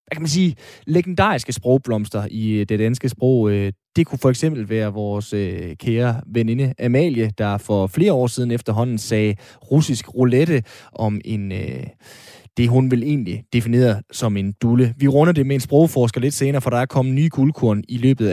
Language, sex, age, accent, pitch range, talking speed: Danish, male, 20-39, native, 110-140 Hz, 175 wpm